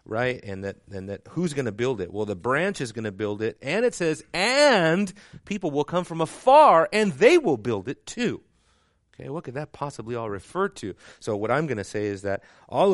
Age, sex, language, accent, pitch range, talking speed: 40-59, male, English, American, 100-150 Hz, 225 wpm